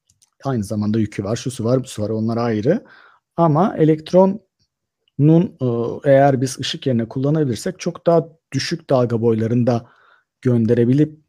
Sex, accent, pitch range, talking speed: male, native, 120-170 Hz, 130 wpm